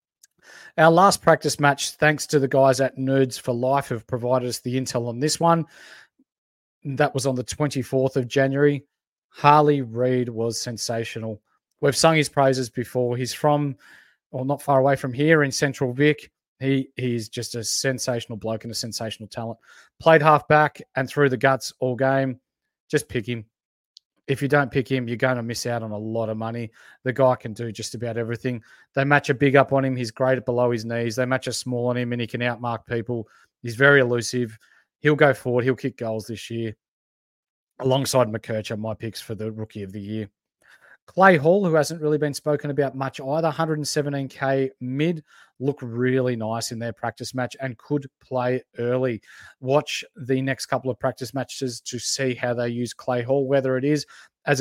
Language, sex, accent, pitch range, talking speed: English, male, Australian, 120-140 Hz, 195 wpm